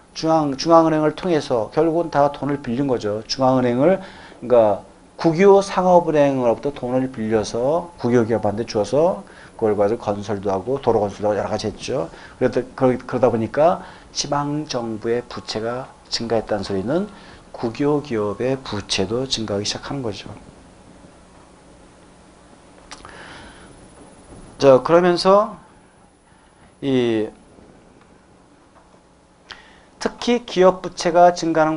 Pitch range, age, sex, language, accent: 115-165 Hz, 40-59, male, Korean, native